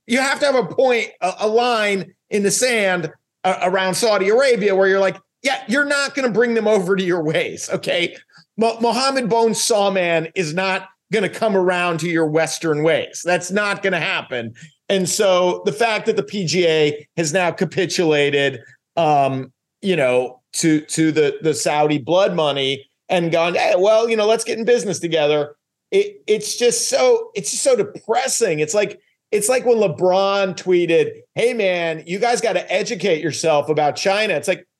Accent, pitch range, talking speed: American, 165-225 Hz, 180 wpm